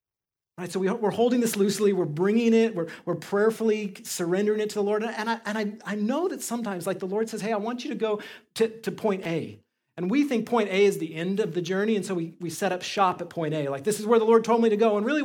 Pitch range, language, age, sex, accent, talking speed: 160-220 Hz, English, 30-49, male, American, 285 wpm